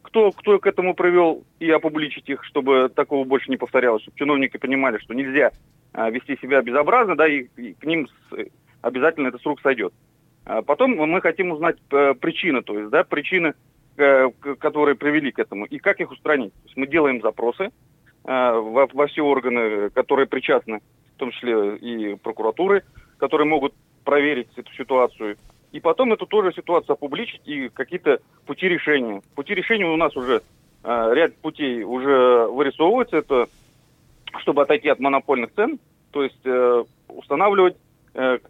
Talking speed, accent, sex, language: 160 wpm, native, male, Russian